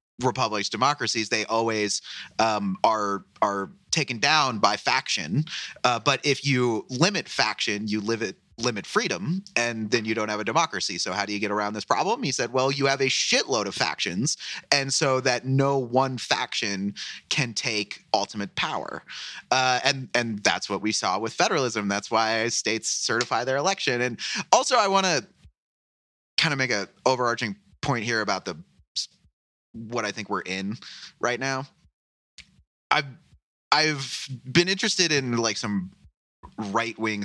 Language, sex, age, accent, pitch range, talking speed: English, male, 30-49, American, 100-130 Hz, 160 wpm